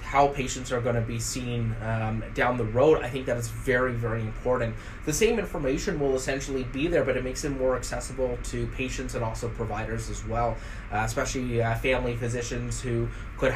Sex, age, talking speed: male, 20-39, 200 wpm